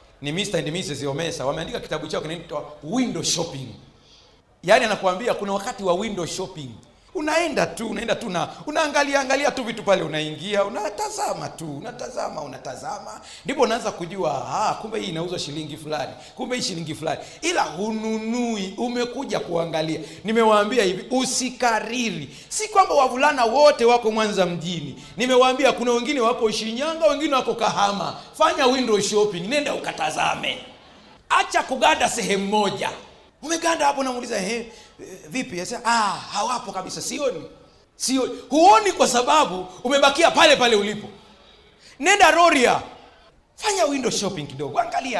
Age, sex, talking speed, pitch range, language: 40-59, male, 140 wpm, 185-280 Hz, Swahili